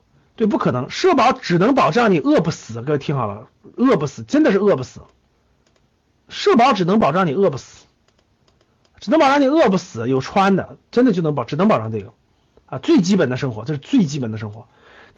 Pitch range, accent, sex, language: 155-255 Hz, native, male, Chinese